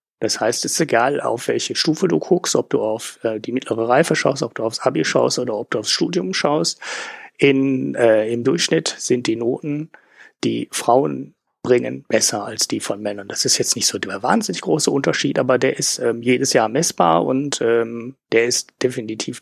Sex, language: male, German